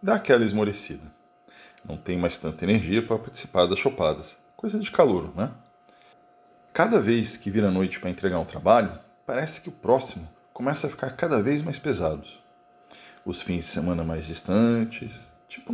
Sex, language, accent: male, Portuguese, Brazilian